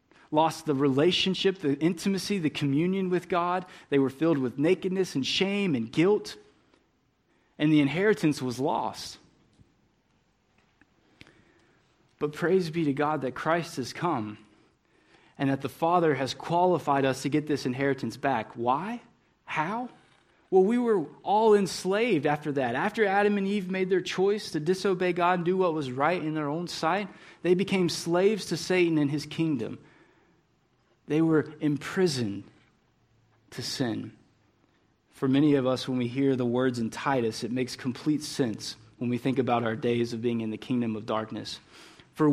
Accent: American